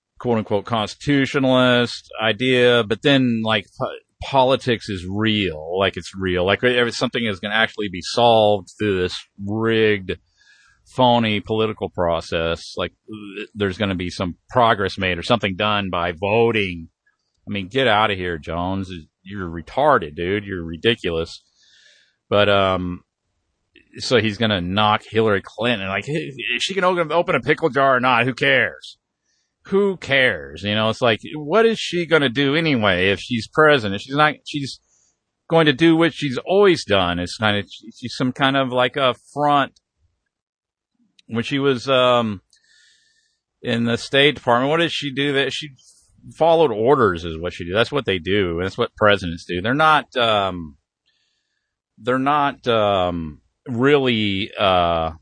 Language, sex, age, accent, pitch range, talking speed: English, male, 40-59, American, 95-135 Hz, 160 wpm